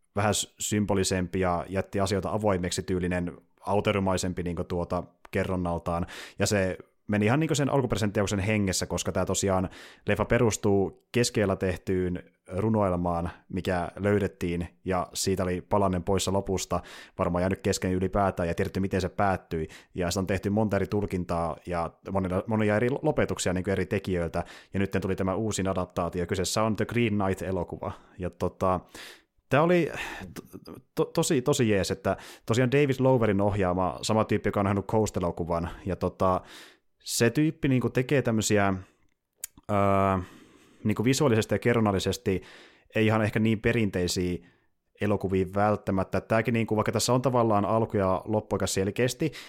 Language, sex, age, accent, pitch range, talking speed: Finnish, male, 30-49, native, 90-110 Hz, 145 wpm